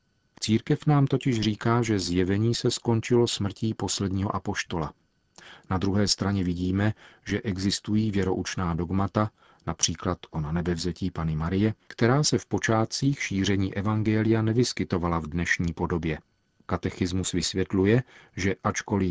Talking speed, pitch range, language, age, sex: 120 wpm, 90-110 Hz, Czech, 40-59, male